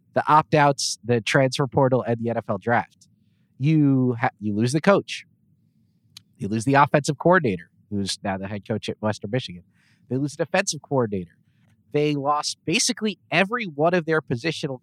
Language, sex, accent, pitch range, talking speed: English, male, American, 115-165 Hz, 160 wpm